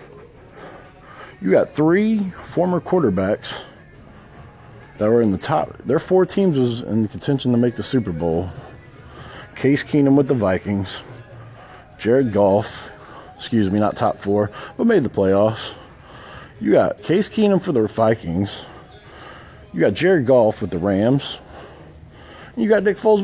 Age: 40-59